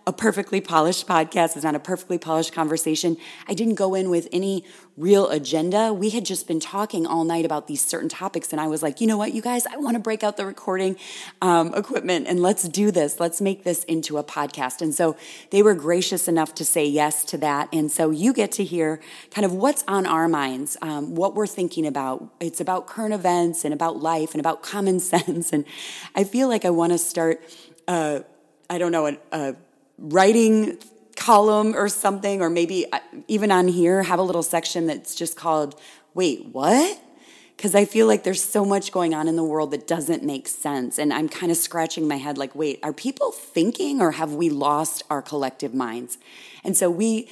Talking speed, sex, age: 210 wpm, female, 20-39